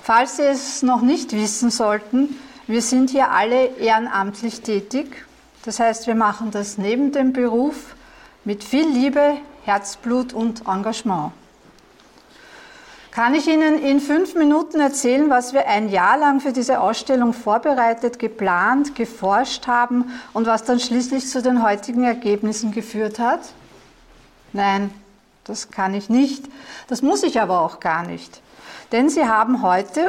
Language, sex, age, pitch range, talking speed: German, female, 50-69, 215-275 Hz, 145 wpm